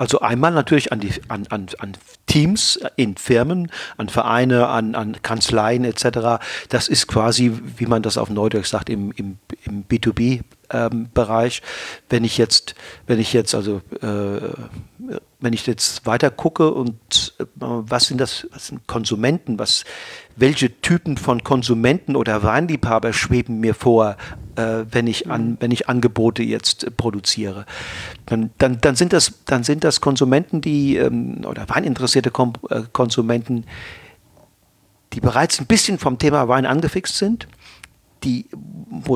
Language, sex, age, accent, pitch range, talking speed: German, male, 50-69, German, 115-140 Hz, 140 wpm